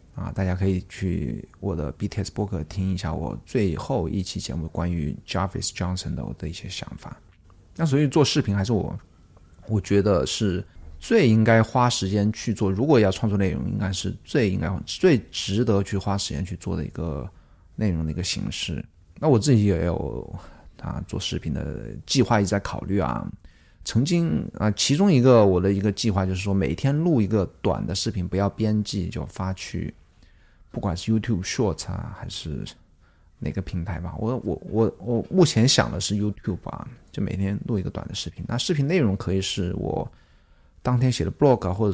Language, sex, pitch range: Chinese, male, 95-110 Hz